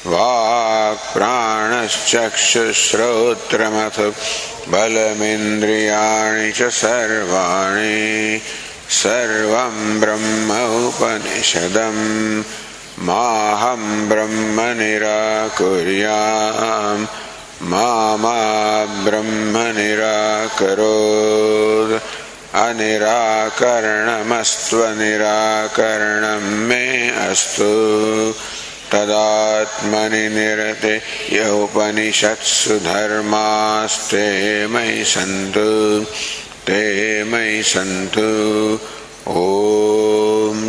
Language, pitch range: English, 105-110 Hz